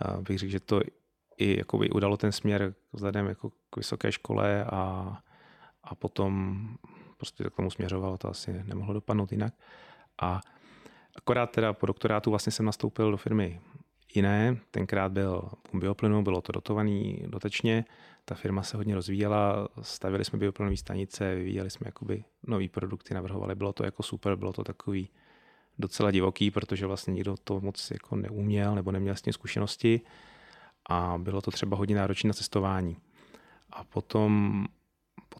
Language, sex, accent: Czech, male, native